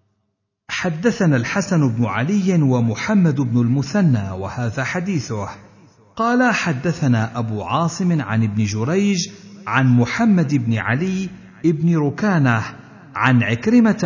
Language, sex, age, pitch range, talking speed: Arabic, male, 50-69, 110-165 Hz, 100 wpm